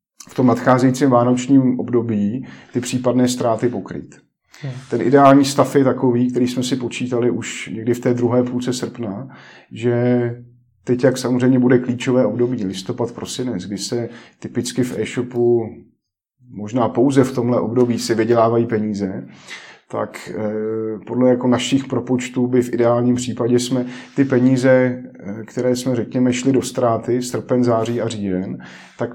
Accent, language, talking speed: native, Czech, 145 wpm